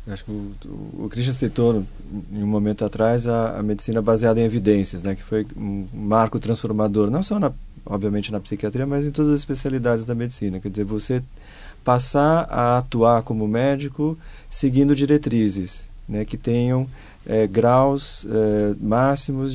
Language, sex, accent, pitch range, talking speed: Portuguese, male, Brazilian, 105-135 Hz, 165 wpm